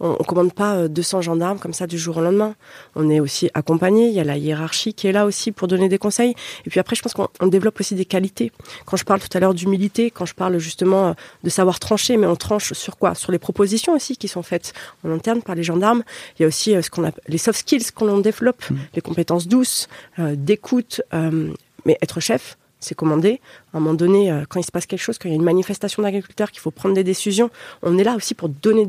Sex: female